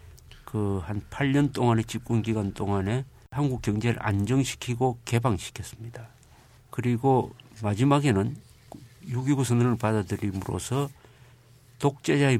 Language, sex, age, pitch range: Korean, male, 50-69, 110-130 Hz